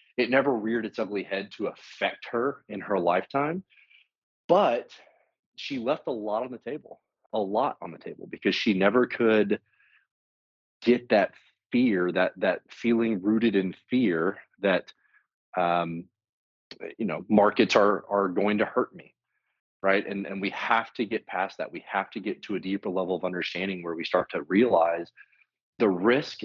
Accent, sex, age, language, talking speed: American, male, 30-49, English, 170 wpm